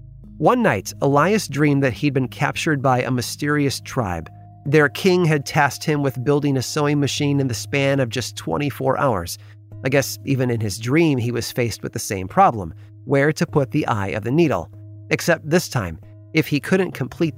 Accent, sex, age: American, male, 30-49